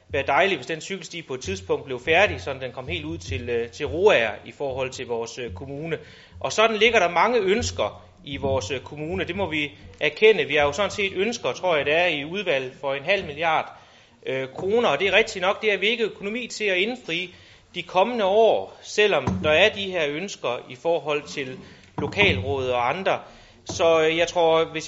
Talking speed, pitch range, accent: 215 wpm, 145-220 Hz, native